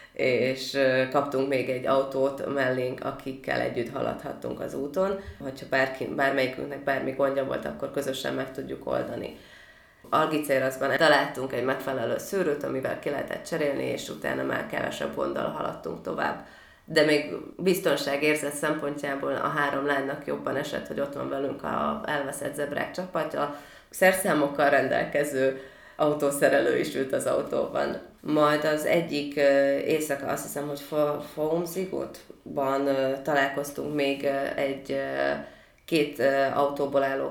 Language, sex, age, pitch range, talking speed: Hungarian, female, 20-39, 135-150 Hz, 125 wpm